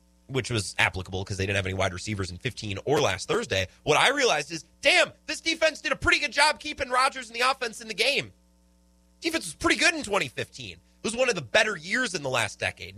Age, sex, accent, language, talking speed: 30-49, male, American, English, 240 wpm